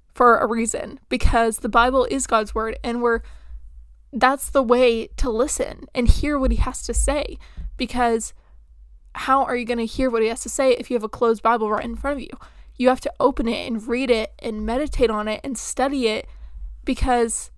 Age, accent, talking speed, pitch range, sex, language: 20-39, American, 210 wpm, 225-260 Hz, female, English